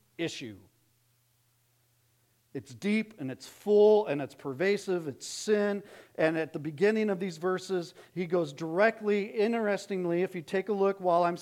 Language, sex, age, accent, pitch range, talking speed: English, male, 40-59, American, 155-205 Hz, 150 wpm